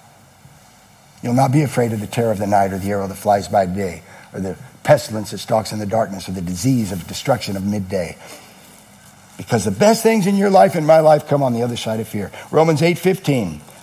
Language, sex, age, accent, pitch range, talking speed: English, male, 50-69, American, 135-210 Hz, 225 wpm